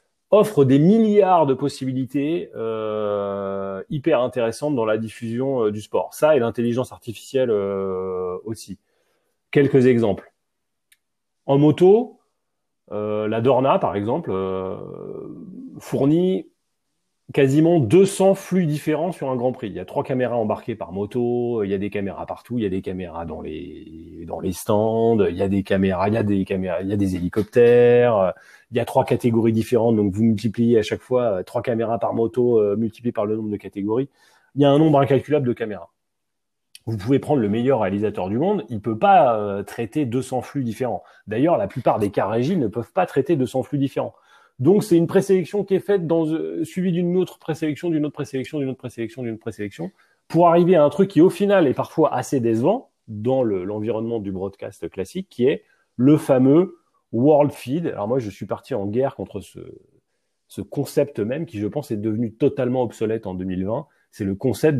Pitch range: 105-155 Hz